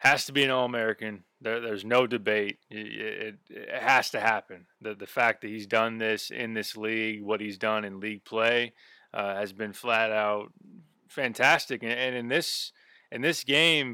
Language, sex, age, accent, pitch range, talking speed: English, male, 20-39, American, 110-125 Hz, 190 wpm